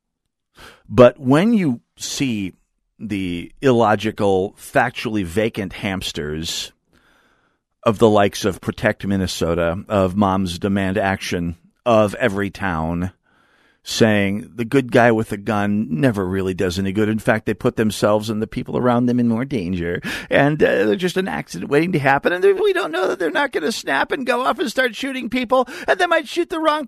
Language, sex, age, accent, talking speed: English, male, 50-69, American, 175 wpm